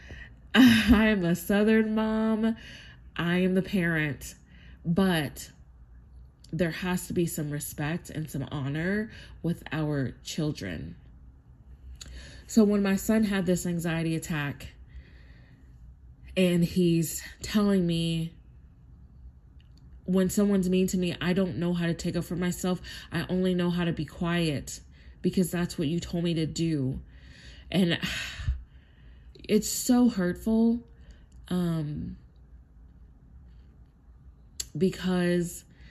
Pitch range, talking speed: 130-185 Hz, 115 wpm